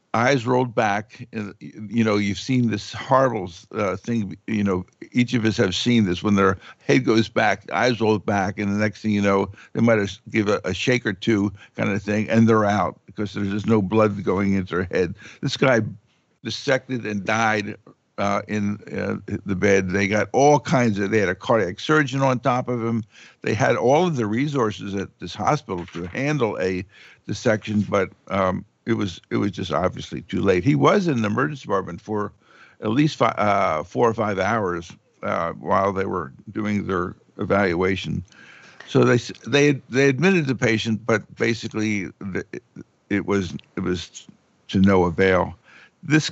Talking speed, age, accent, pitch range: 185 wpm, 60-79, American, 100-115 Hz